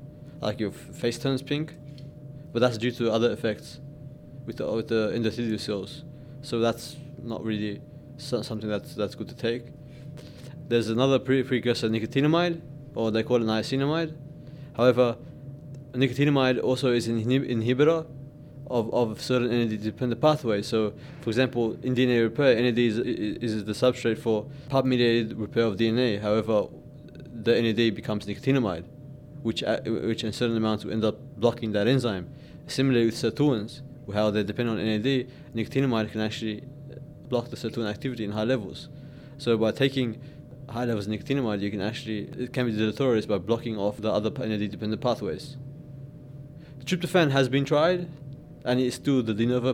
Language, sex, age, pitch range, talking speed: English, male, 20-39, 110-145 Hz, 160 wpm